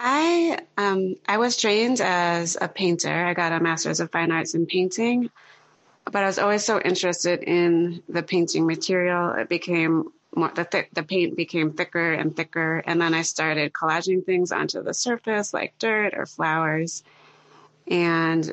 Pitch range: 160-185 Hz